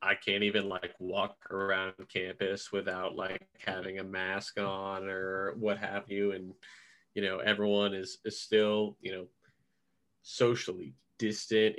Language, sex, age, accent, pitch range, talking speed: English, male, 30-49, American, 95-110 Hz, 145 wpm